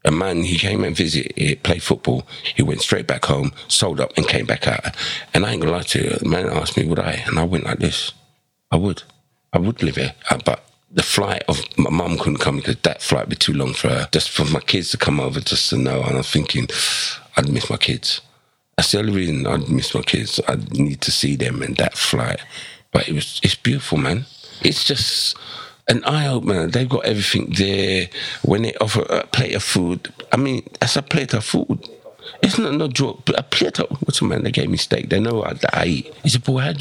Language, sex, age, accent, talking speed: English, male, 50-69, British, 245 wpm